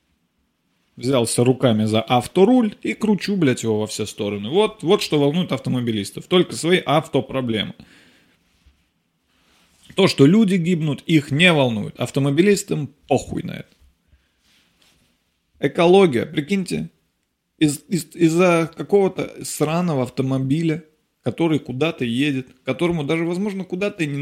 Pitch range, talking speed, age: 130-175 Hz, 115 wpm, 20-39